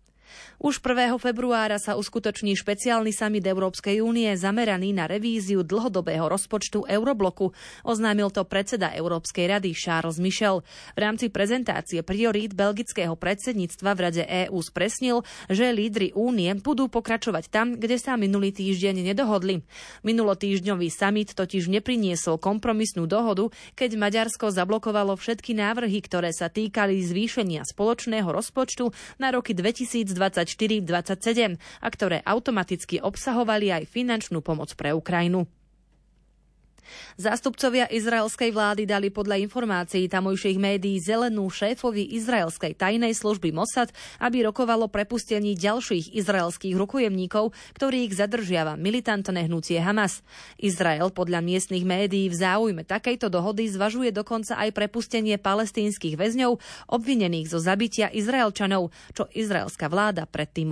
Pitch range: 185-225 Hz